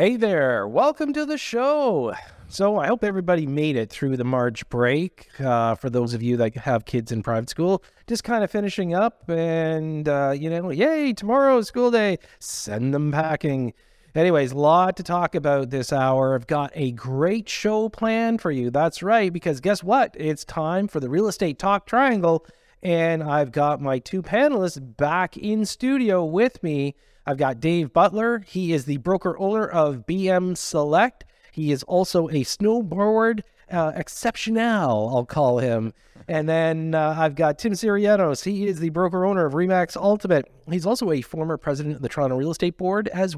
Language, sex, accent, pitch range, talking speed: English, male, American, 140-200 Hz, 185 wpm